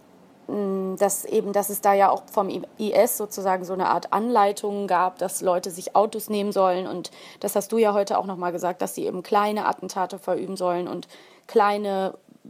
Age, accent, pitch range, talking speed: 20-39, German, 190-225 Hz, 190 wpm